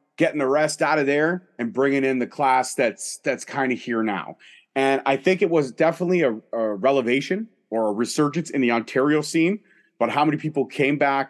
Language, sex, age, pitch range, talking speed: English, male, 30-49, 130-160 Hz, 205 wpm